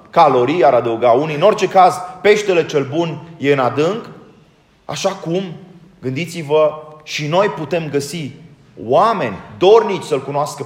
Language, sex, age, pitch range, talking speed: Romanian, male, 30-49, 165-200 Hz, 135 wpm